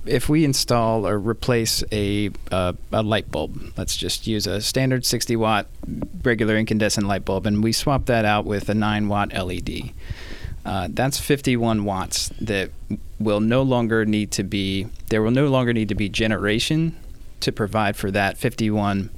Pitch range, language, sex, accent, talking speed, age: 100-115 Hz, English, male, American, 165 wpm, 30-49